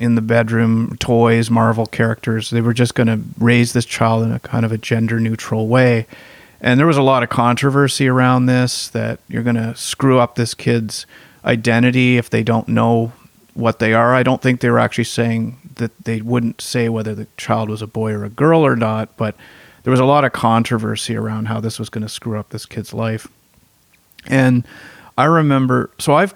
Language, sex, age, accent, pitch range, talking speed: English, male, 40-59, American, 115-130 Hz, 205 wpm